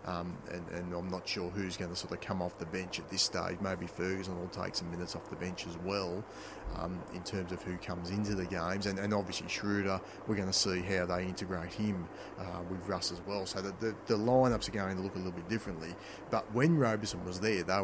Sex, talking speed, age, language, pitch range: male, 250 wpm, 30-49, English, 90-105 Hz